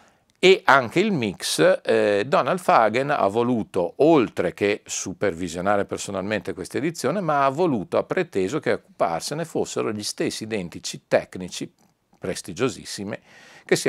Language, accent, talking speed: Italian, native, 130 wpm